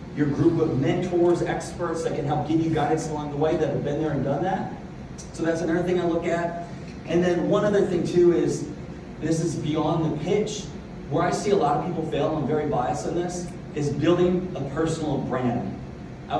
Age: 30-49